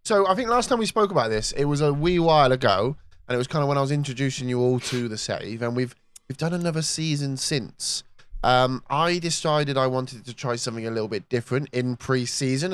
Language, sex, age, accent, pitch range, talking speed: English, male, 10-29, British, 120-150 Hz, 235 wpm